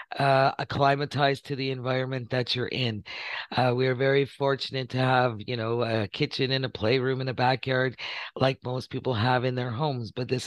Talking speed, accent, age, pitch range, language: 195 wpm, American, 50-69, 120-135 Hz, English